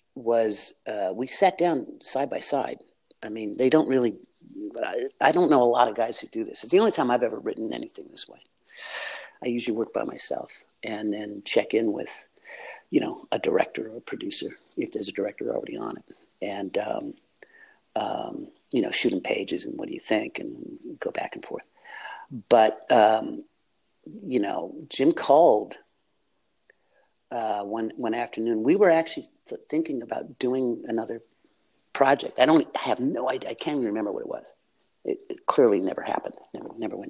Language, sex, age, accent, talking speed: English, male, 50-69, American, 185 wpm